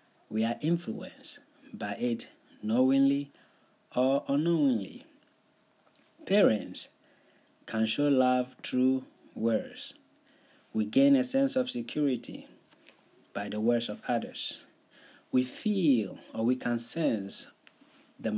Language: English